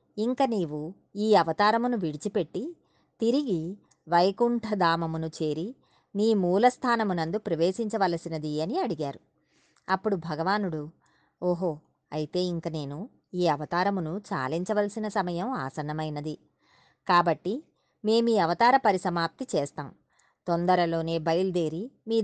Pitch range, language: 165-215 Hz, Telugu